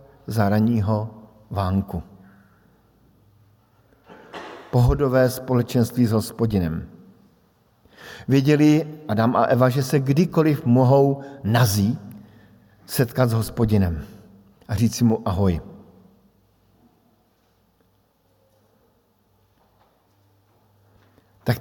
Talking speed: 65 wpm